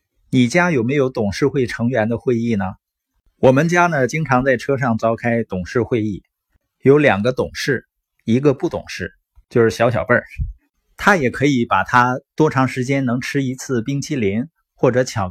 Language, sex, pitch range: Chinese, male, 110-150 Hz